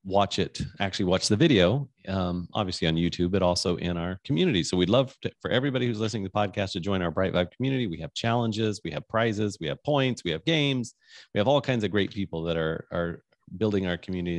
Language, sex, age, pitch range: English, male, 30-49, 90-120 Hz